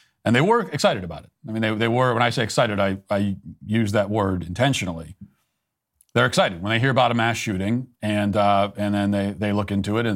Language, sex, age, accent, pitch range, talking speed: English, male, 40-59, American, 105-140 Hz, 235 wpm